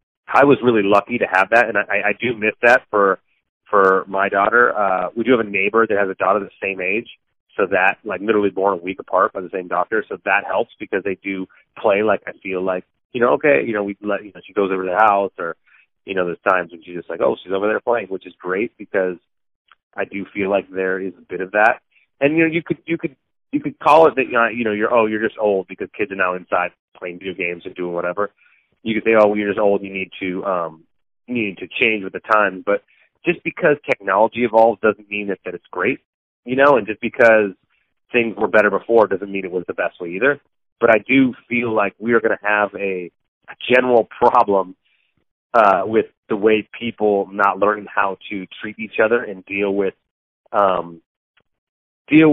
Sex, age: male, 30-49